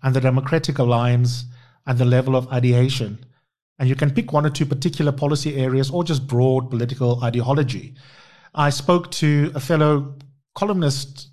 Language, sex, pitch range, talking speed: English, male, 120-145 Hz, 160 wpm